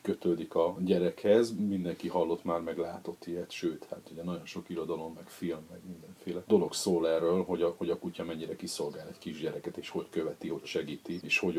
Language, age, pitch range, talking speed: Hungarian, 40-59, 85-110 Hz, 195 wpm